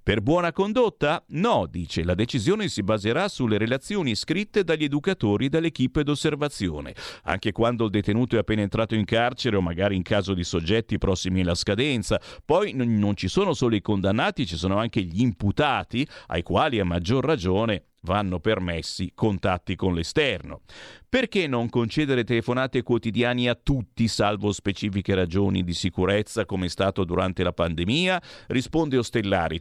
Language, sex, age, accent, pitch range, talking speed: Italian, male, 50-69, native, 95-145 Hz, 155 wpm